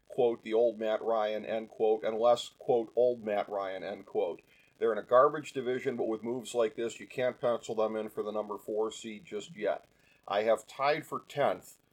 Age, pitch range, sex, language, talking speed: 40-59, 110-130 Hz, male, English, 210 wpm